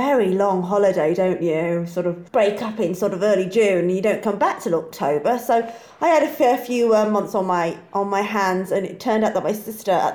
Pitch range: 175-215 Hz